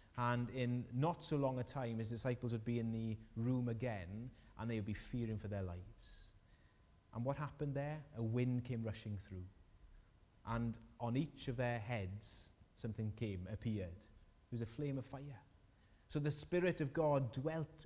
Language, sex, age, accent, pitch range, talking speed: English, male, 30-49, British, 100-135 Hz, 180 wpm